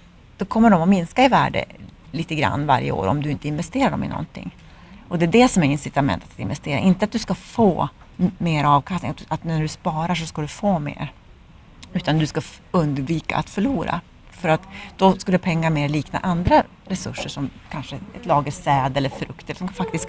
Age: 30-49